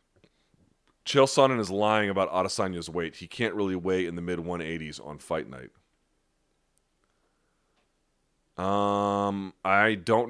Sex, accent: male, American